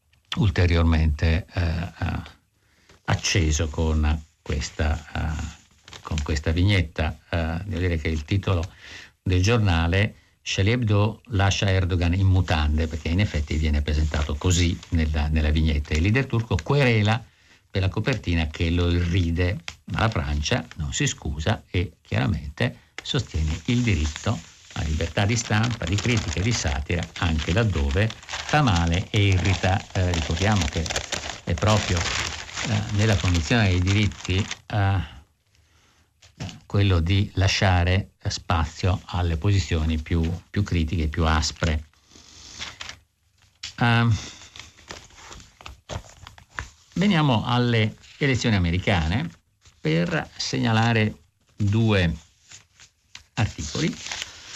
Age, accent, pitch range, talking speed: 50-69, native, 80-105 Hz, 110 wpm